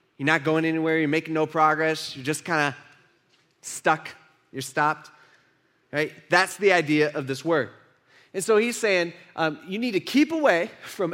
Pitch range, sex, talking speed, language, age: 155-225 Hz, male, 180 wpm, English, 20-39